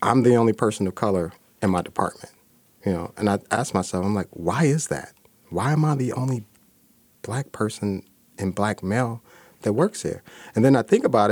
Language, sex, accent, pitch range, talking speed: English, male, American, 100-120 Hz, 200 wpm